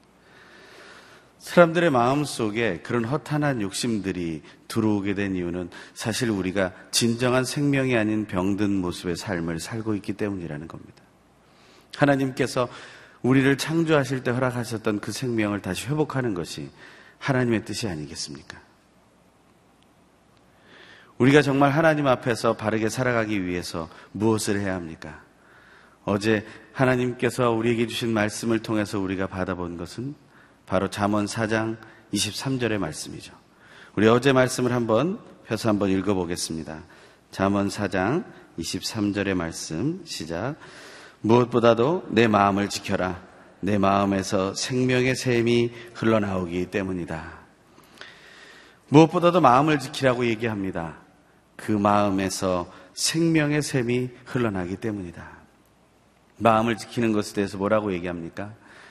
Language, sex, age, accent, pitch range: Korean, male, 40-59, native, 95-125 Hz